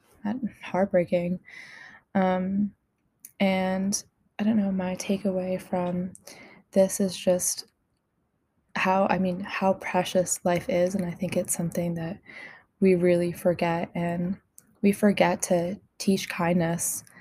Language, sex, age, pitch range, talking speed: English, female, 20-39, 180-195 Hz, 120 wpm